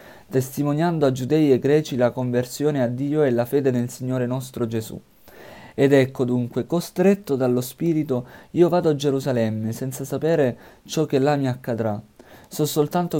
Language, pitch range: Italian, 125-150 Hz